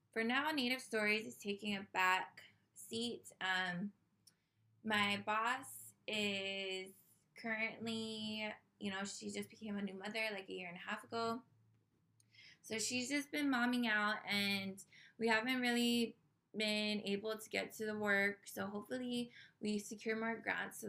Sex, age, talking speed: female, 20-39, 150 wpm